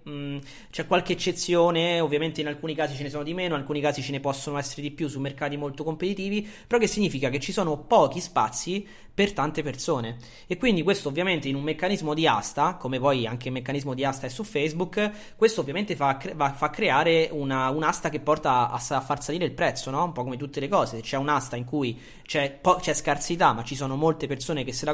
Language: Italian